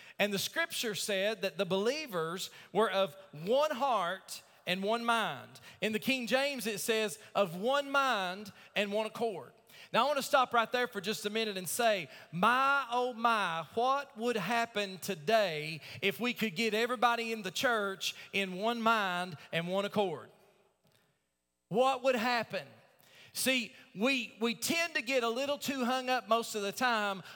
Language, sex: English, male